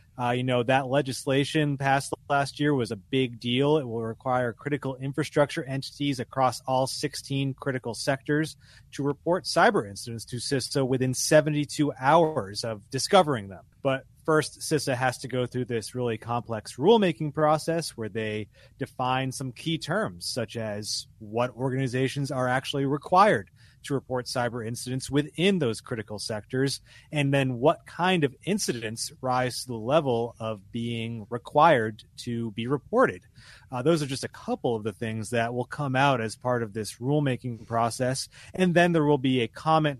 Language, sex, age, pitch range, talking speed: English, male, 30-49, 120-145 Hz, 165 wpm